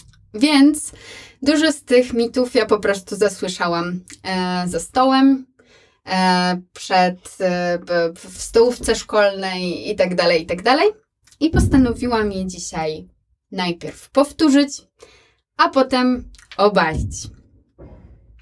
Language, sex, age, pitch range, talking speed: Polish, female, 20-39, 180-250 Hz, 80 wpm